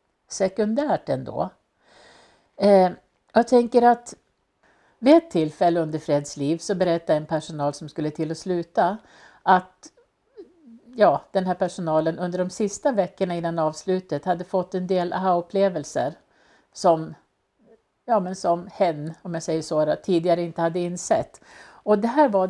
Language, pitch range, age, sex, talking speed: Swedish, 165-220 Hz, 60-79, female, 145 wpm